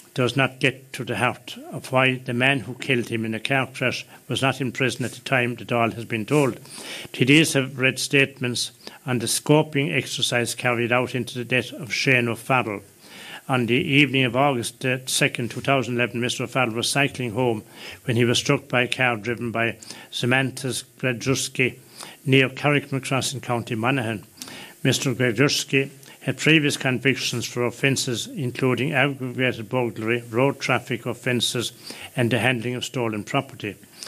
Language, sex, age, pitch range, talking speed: English, male, 70-89, 120-135 Hz, 165 wpm